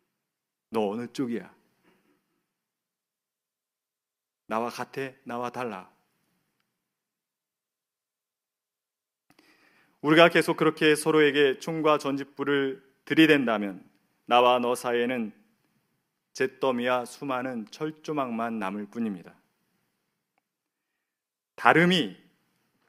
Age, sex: 40-59, male